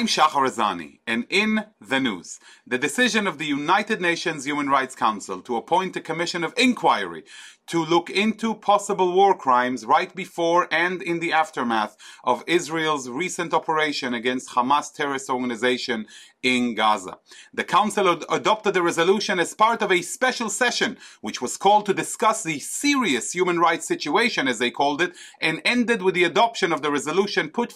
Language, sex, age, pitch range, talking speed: English, male, 40-59, 160-205 Hz, 165 wpm